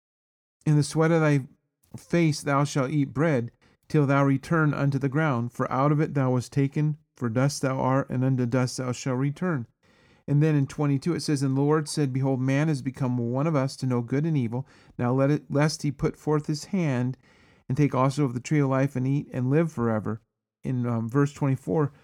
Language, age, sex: English, 40-59, male